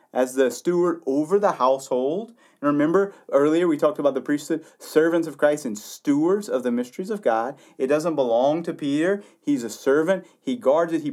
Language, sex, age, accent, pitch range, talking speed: English, male, 30-49, American, 130-200 Hz, 195 wpm